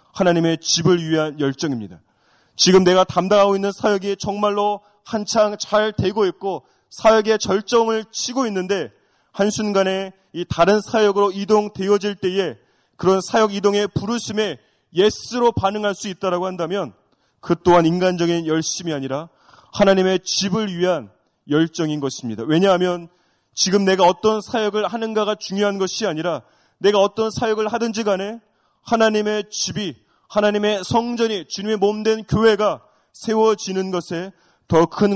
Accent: native